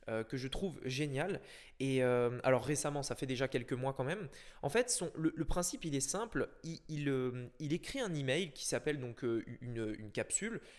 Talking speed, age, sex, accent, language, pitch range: 210 wpm, 20-39, male, French, French, 130-175 Hz